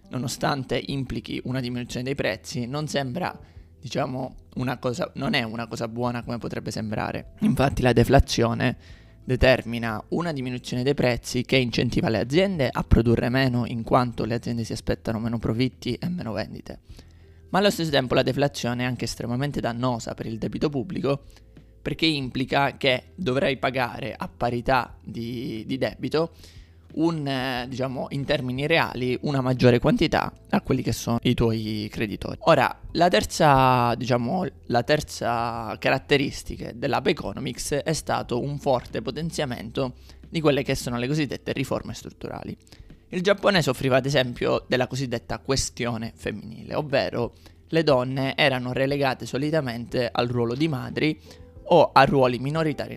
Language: Italian